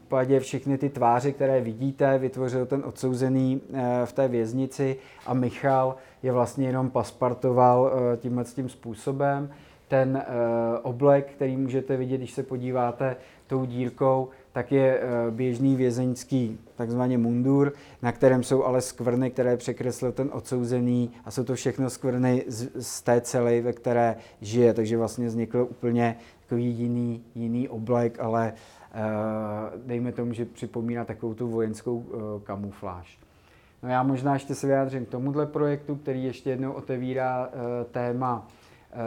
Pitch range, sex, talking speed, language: 120-135 Hz, male, 135 wpm, Czech